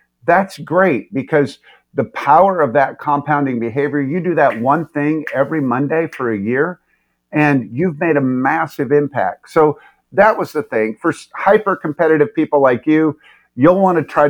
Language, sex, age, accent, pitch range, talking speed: English, male, 50-69, American, 130-160 Hz, 165 wpm